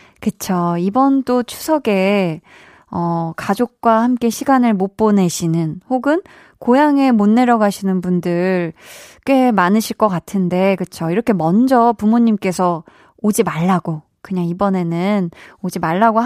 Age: 20-39